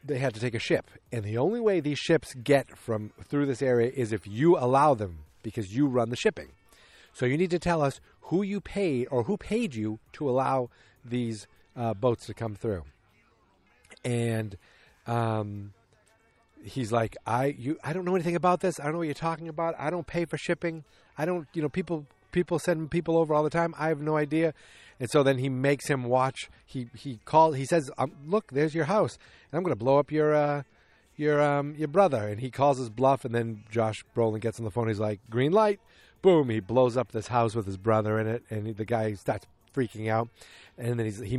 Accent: American